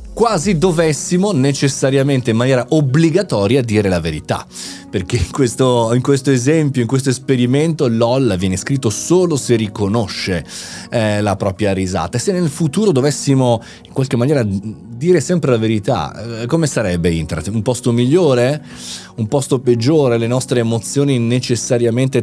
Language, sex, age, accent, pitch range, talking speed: Italian, male, 30-49, native, 105-145 Hz, 145 wpm